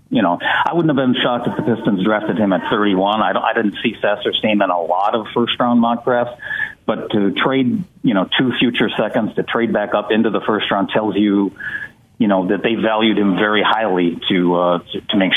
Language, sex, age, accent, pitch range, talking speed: English, male, 50-69, American, 95-110 Hz, 225 wpm